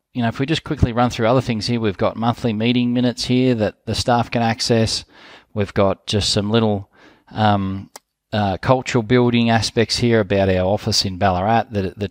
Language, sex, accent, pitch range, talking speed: English, male, Australian, 100-125 Hz, 200 wpm